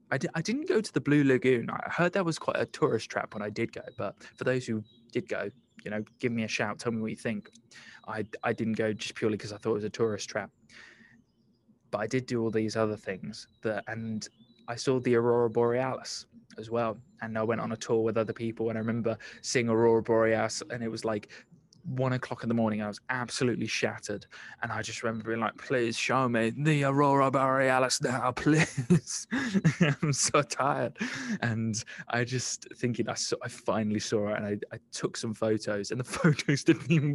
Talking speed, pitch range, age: 215 wpm, 110-130 Hz, 20-39